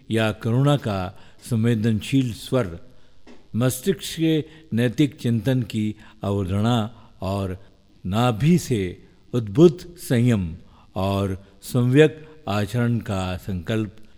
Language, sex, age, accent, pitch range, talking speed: Hindi, male, 50-69, native, 100-140 Hz, 90 wpm